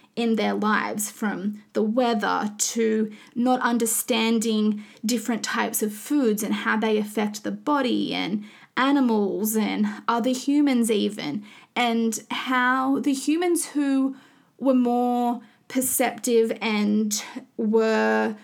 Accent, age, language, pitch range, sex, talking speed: Australian, 20-39, English, 215-260 Hz, female, 115 wpm